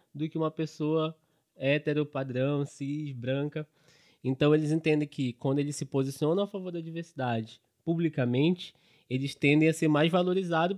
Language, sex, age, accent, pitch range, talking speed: Portuguese, male, 20-39, Brazilian, 120-155 Hz, 150 wpm